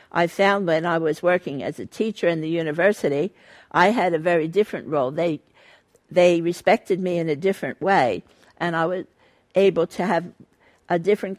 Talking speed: 180 wpm